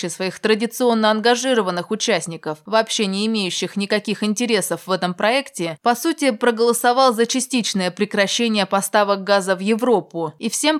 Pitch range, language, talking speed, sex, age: 185-235 Hz, Russian, 135 wpm, female, 20-39